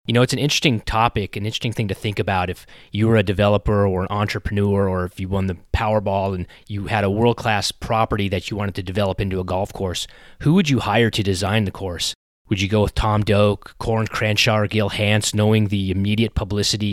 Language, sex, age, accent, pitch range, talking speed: English, male, 30-49, American, 100-115 Hz, 225 wpm